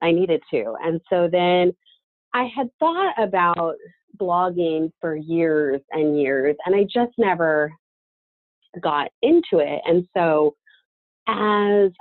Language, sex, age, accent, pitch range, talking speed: English, female, 30-49, American, 155-215 Hz, 125 wpm